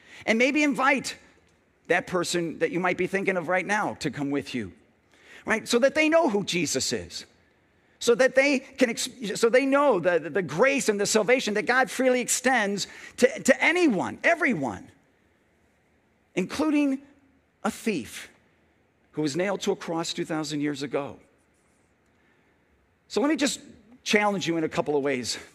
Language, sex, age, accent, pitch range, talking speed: English, male, 50-69, American, 175-255 Hz, 165 wpm